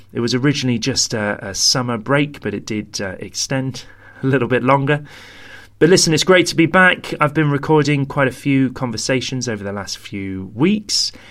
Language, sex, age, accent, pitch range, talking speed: English, male, 30-49, British, 110-150 Hz, 190 wpm